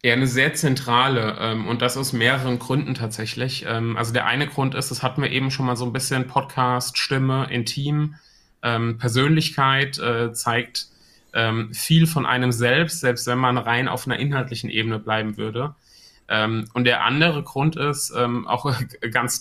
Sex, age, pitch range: male, 30-49, 115-135 Hz